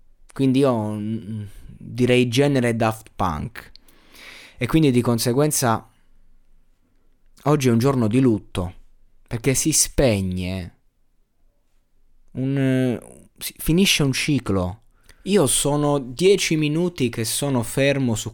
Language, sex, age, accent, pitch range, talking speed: Italian, male, 20-39, native, 110-145 Hz, 110 wpm